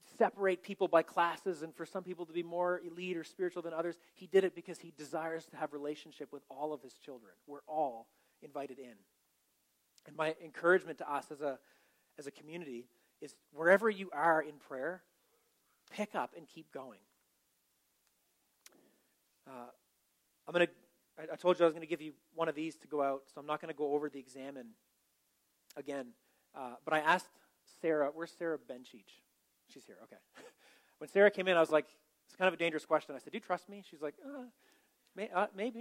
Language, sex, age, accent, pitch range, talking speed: English, male, 30-49, American, 150-185 Hz, 195 wpm